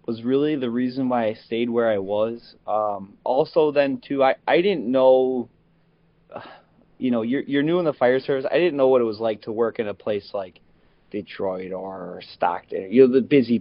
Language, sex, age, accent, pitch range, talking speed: English, male, 20-39, American, 110-130 Hz, 210 wpm